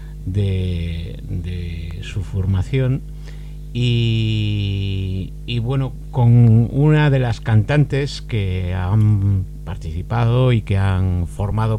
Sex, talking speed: male, 95 wpm